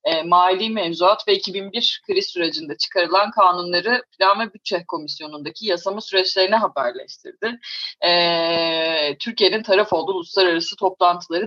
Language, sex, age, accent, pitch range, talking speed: Turkish, female, 30-49, native, 160-220 Hz, 115 wpm